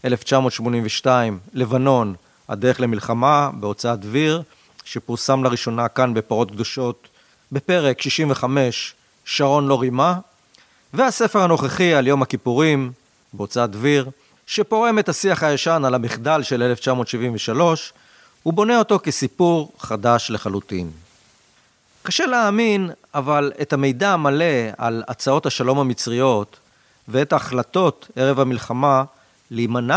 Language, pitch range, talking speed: Hebrew, 120-155 Hz, 105 wpm